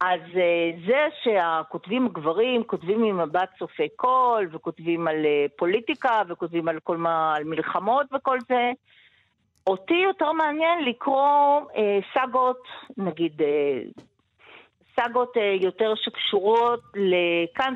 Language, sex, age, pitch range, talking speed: Hebrew, female, 50-69, 175-245 Hz, 110 wpm